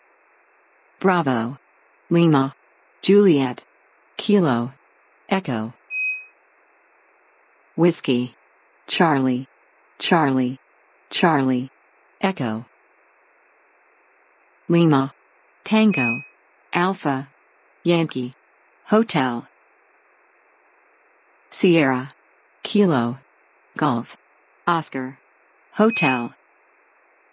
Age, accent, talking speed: 50-69, American, 45 wpm